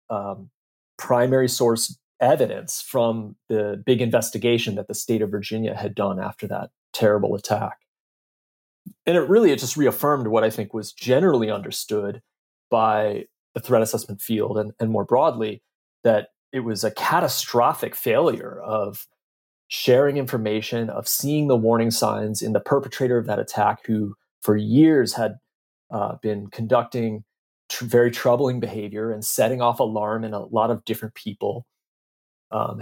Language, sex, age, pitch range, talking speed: English, male, 30-49, 105-125 Hz, 150 wpm